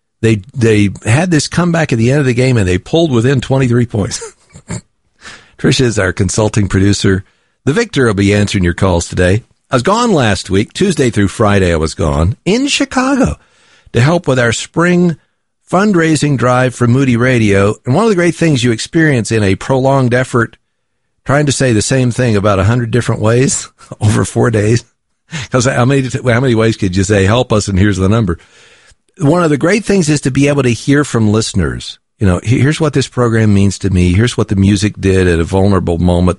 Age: 50-69